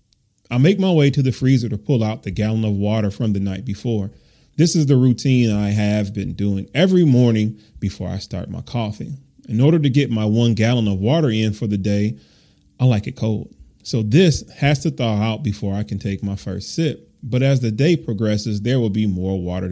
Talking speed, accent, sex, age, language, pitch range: 220 wpm, American, male, 30-49, English, 105-135 Hz